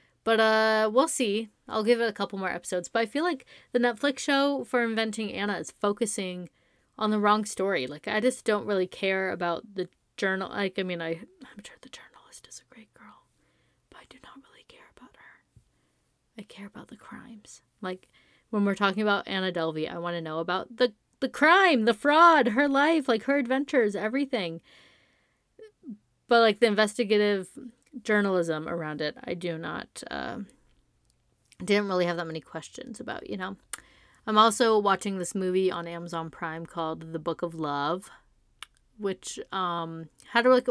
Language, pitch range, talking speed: English, 175-230 Hz, 180 wpm